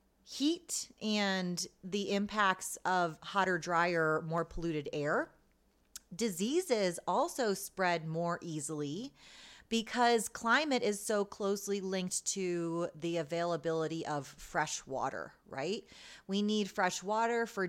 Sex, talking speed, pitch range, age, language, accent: female, 110 wpm, 160-210 Hz, 30-49, English, American